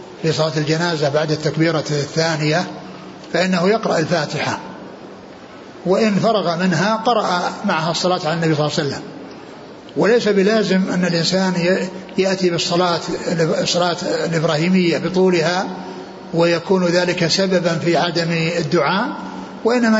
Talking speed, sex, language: 110 wpm, male, Arabic